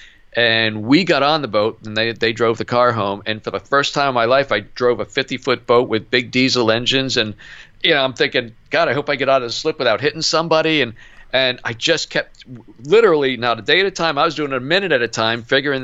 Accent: American